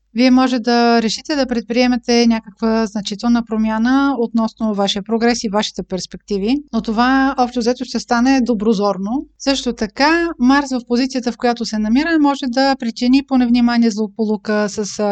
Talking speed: 145 wpm